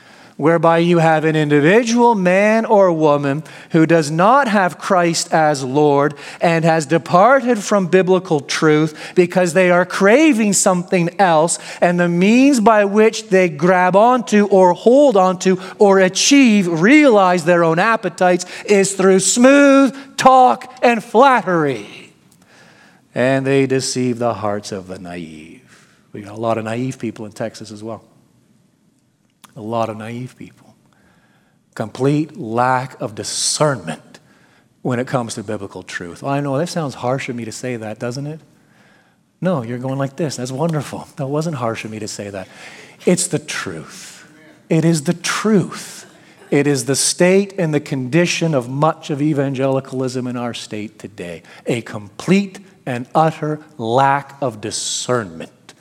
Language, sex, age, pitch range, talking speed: English, male, 40-59, 130-185 Hz, 150 wpm